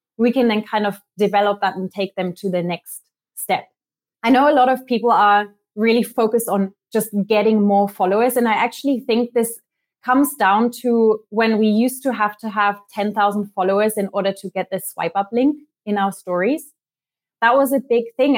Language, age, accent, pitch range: English, 20-39, German, 200-240 Hz